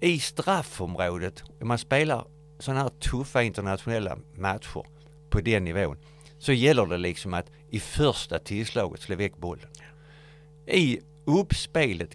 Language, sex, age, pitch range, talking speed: Swedish, male, 60-79, 100-150 Hz, 130 wpm